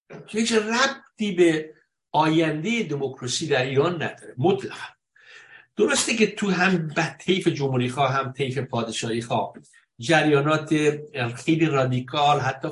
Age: 60-79